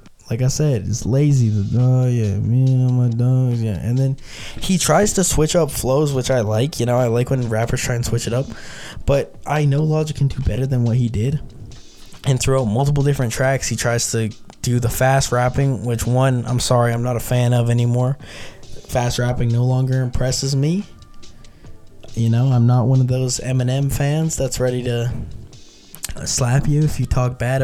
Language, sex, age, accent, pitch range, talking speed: English, male, 20-39, American, 115-130 Hz, 200 wpm